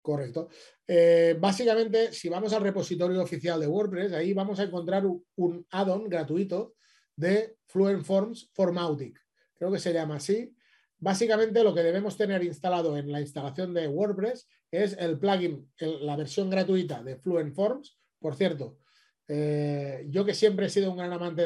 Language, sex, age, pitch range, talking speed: Spanish, male, 30-49, 160-205 Hz, 160 wpm